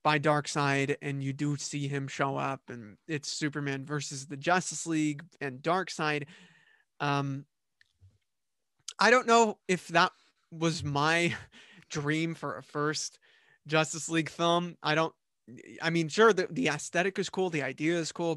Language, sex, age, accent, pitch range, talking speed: English, male, 20-39, American, 145-175 Hz, 160 wpm